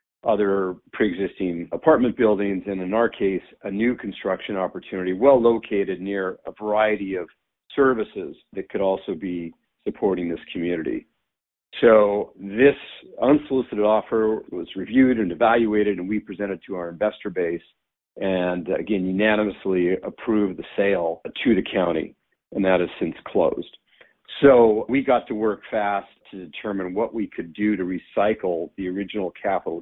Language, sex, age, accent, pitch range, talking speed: English, male, 50-69, American, 95-110 Hz, 145 wpm